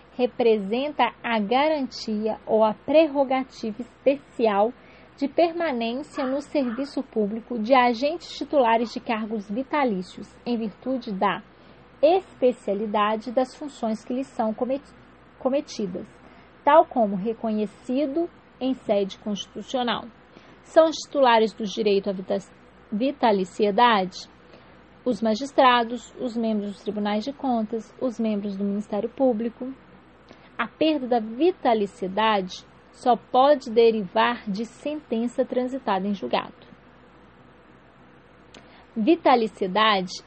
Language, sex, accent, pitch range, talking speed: English, female, Brazilian, 215-270 Hz, 100 wpm